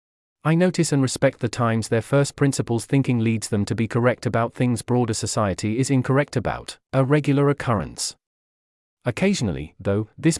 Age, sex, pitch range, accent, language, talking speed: 30-49, male, 110-140 Hz, British, English, 160 wpm